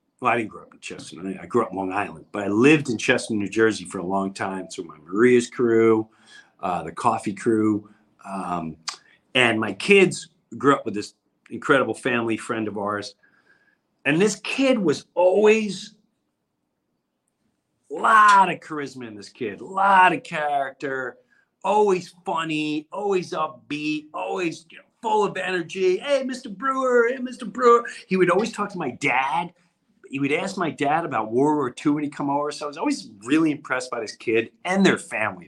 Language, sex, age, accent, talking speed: English, male, 40-59, American, 185 wpm